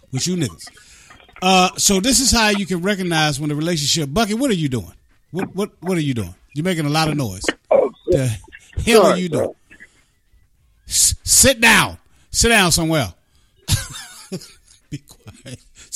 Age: 30-49